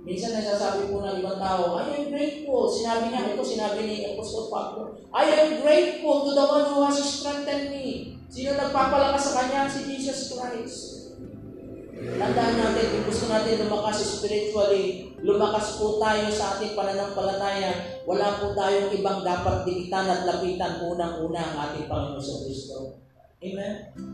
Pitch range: 200-290 Hz